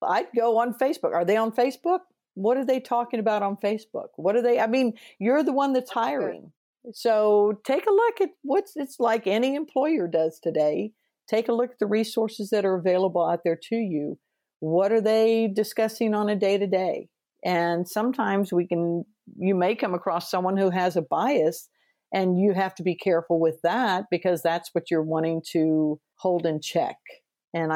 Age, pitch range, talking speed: 50-69, 160-215 Hz, 195 wpm